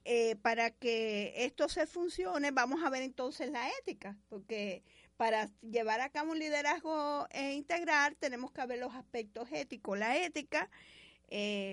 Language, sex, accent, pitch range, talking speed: Spanish, female, American, 235-295 Hz, 155 wpm